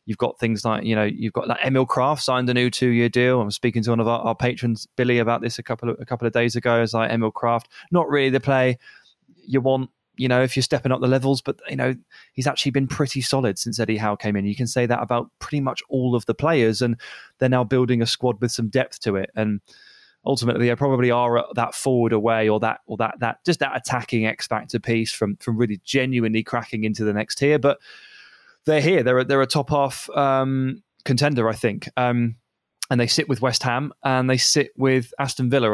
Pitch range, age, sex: 115-130 Hz, 20-39, male